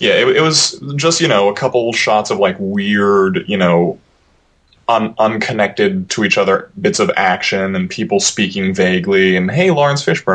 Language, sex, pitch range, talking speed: English, male, 95-130 Hz, 180 wpm